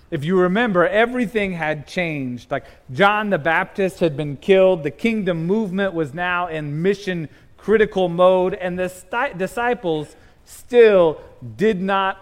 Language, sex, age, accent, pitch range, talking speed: English, male, 30-49, American, 145-195 Hz, 135 wpm